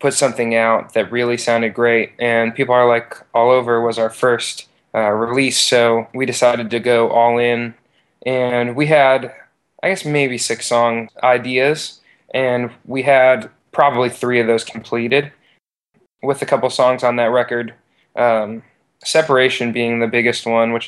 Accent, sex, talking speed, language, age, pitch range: American, male, 160 wpm, English, 20-39, 115-130 Hz